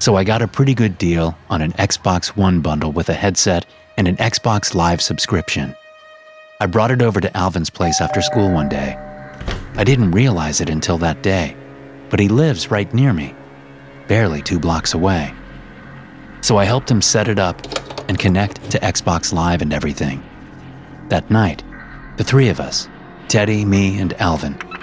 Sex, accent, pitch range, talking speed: male, American, 80-110 Hz, 175 wpm